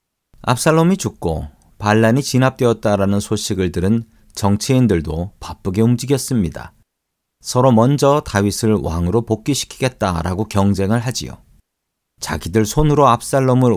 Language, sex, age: Korean, male, 40-59